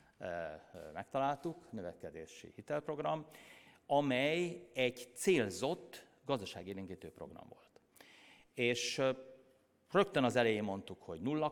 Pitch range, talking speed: 105-135 Hz, 85 wpm